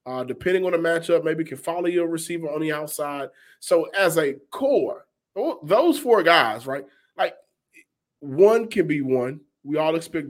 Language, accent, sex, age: English, American, male, 20-39